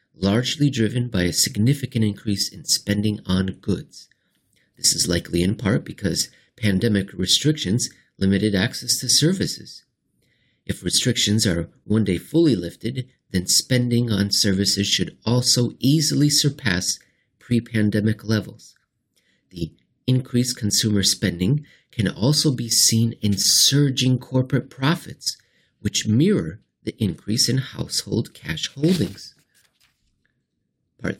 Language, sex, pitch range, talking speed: English, male, 100-130 Hz, 115 wpm